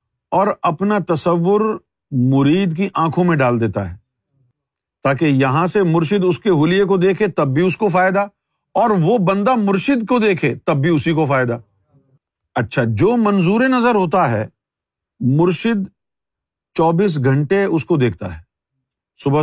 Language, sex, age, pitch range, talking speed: Urdu, male, 50-69, 135-195 Hz, 150 wpm